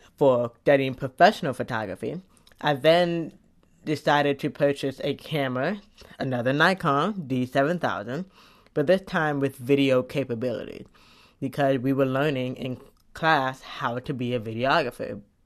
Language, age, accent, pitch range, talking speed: English, 20-39, American, 125-150 Hz, 120 wpm